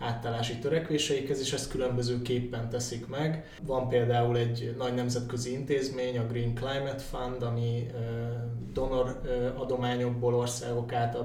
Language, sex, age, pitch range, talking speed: Hungarian, male, 20-39, 120-130 Hz, 115 wpm